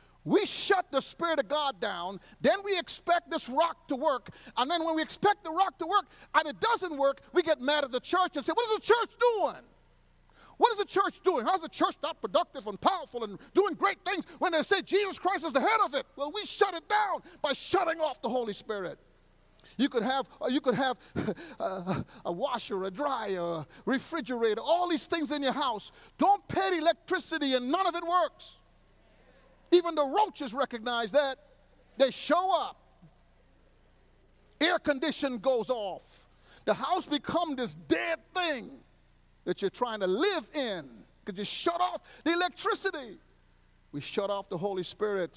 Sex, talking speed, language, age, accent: male, 185 wpm, English, 50-69, American